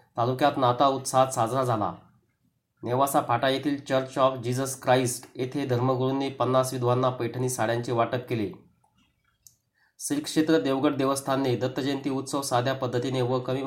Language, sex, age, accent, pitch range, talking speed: Marathi, male, 30-49, native, 125-135 Hz, 125 wpm